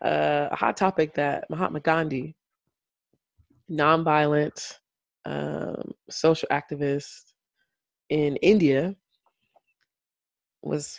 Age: 20-39